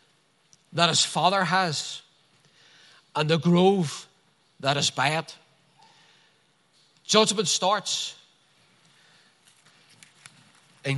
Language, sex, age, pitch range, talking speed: English, male, 40-59, 150-190 Hz, 75 wpm